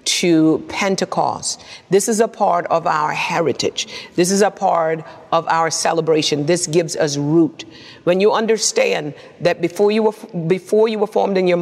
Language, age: English, 50-69